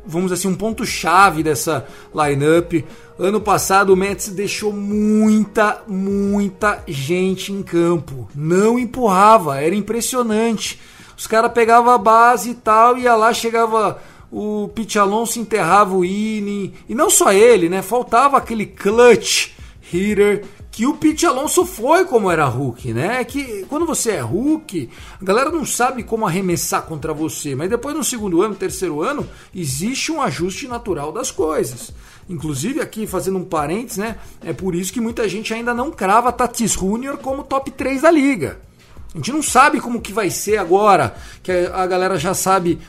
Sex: male